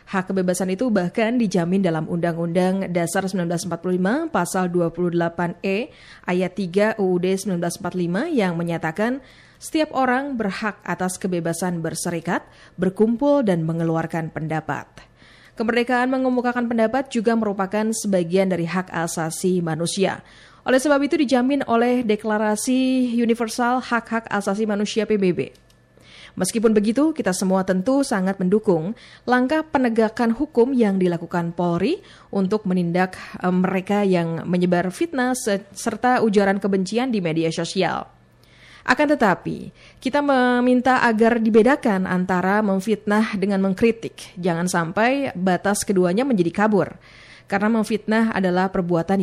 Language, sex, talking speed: Indonesian, female, 115 wpm